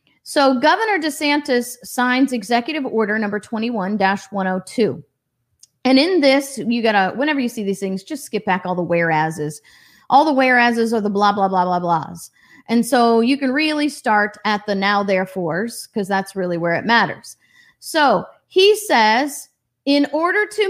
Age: 30-49